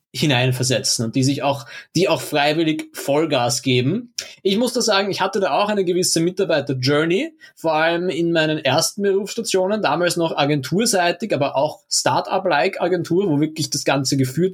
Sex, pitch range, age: male, 145-180 Hz, 20-39